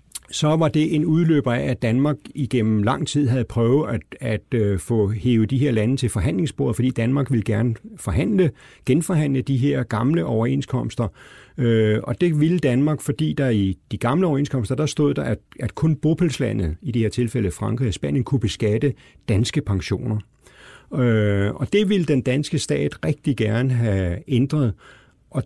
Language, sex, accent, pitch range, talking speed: Danish, male, native, 110-135 Hz, 175 wpm